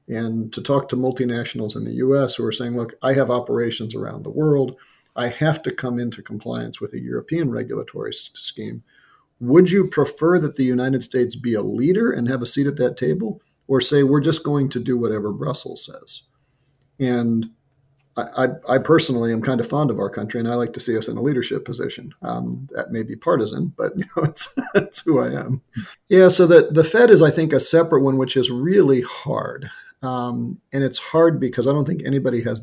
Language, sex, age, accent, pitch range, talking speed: English, male, 40-59, American, 120-145 Hz, 215 wpm